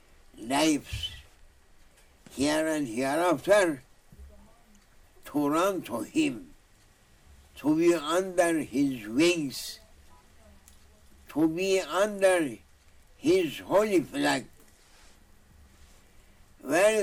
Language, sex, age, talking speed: English, male, 60-79, 70 wpm